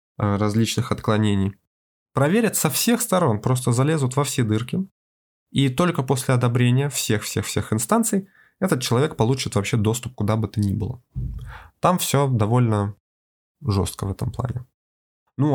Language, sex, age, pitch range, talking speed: Russian, male, 20-39, 105-130 Hz, 145 wpm